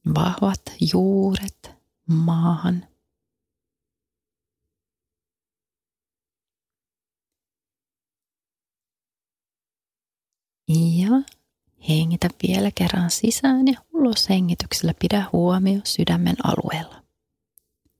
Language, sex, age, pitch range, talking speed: Finnish, female, 30-49, 170-210 Hz, 50 wpm